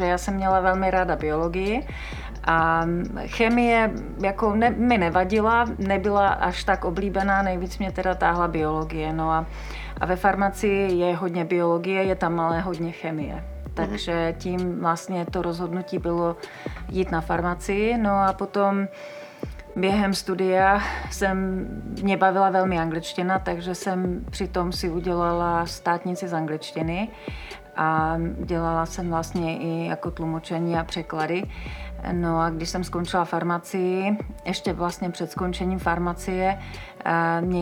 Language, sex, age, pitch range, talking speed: Slovak, female, 30-49, 165-190 Hz, 130 wpm